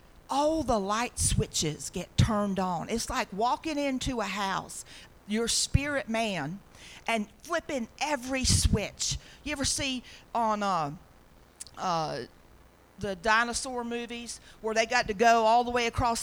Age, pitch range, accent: 40-59, 195-310 Hz, American